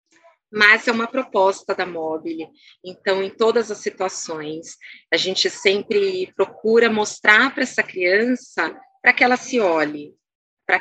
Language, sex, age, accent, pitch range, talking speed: Portuguese, female, 30-49, Brazilian, 180-245 Hz, 140 wpm